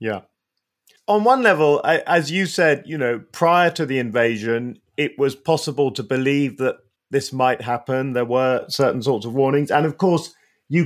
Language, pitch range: English, 115-145 Hz